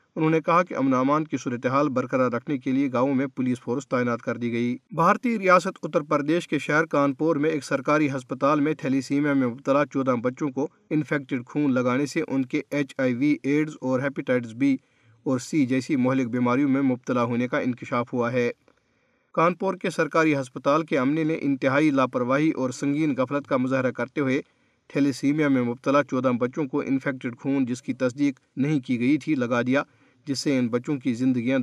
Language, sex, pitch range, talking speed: Urdu, male, 125-155 Hz, 195 wpm